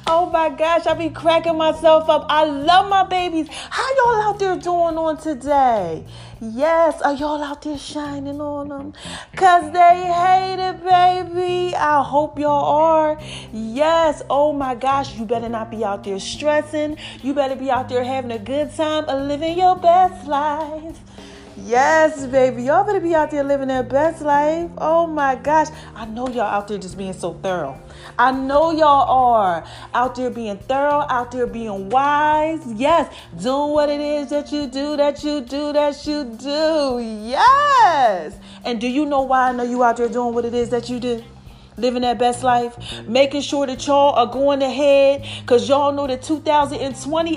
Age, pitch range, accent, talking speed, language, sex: 30-49, 255-320 Hz, American, 180 wpm, English, female